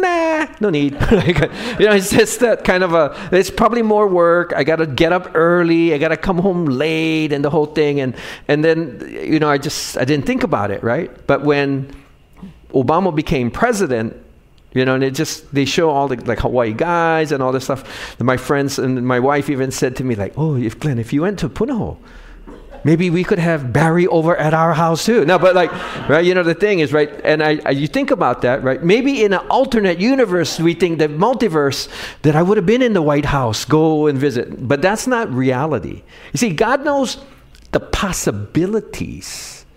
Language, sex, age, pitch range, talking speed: English, male, 40-59, 135-185 Hz, 215 wpm